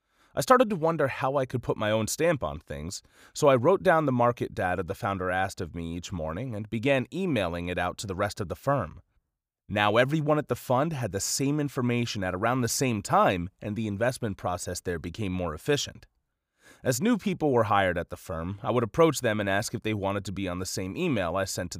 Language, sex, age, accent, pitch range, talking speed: English, male, 30-49, American, 95-130 Hz, 235 wpm